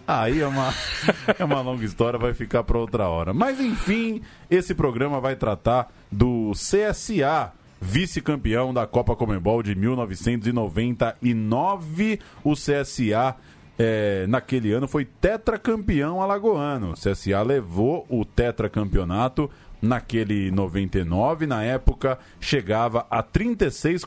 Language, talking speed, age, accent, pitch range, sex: Portuguese, 115 wpm, 20-39, Brazilian, 105-145 Hz, male